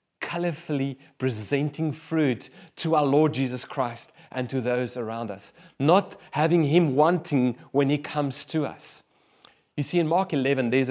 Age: 30-49